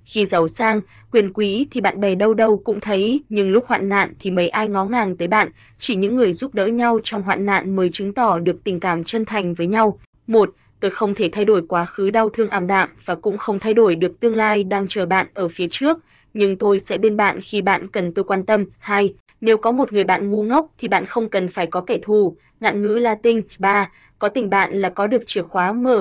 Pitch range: 190-225 Hz